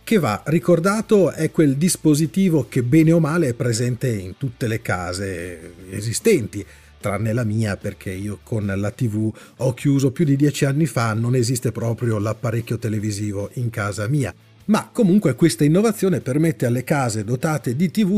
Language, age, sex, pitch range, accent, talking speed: Italian, 40-59, male, 115-175 Hz, native, 165 wpm